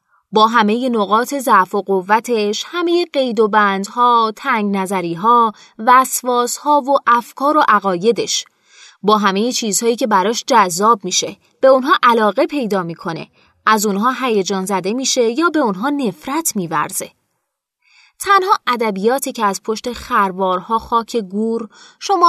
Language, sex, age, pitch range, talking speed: Persian, female, 20-39, 200-265 Hz, 135 wpm